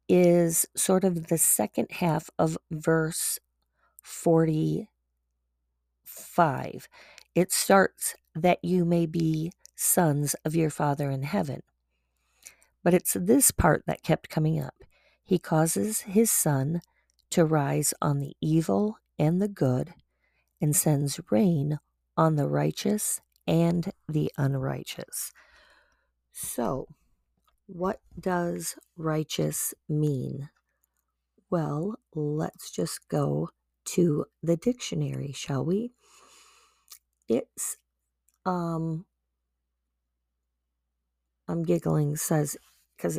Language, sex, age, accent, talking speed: English, female, 40-59, American, 95 wpm